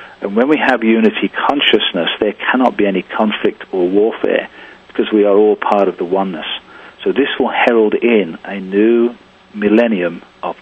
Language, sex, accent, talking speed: English, male, British, 170 wpm